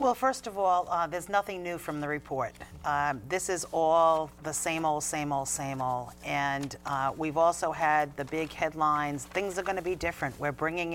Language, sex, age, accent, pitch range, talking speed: English, female, 50-69, American, 155-195 Hz, 210 wpm